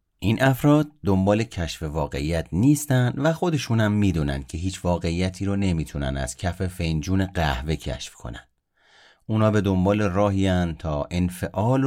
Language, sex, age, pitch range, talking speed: Persian, male, 30-49, 85-120 Hz, 130 wpm